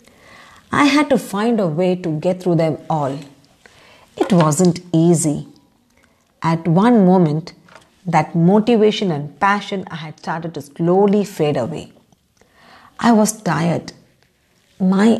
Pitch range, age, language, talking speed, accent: 160-205 Hz, 50-69, English, 125 wpm, Indian